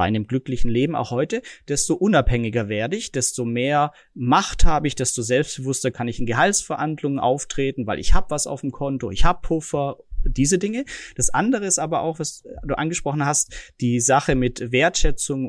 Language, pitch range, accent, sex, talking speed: German, 125-160 Hz, German, male, 180 wpm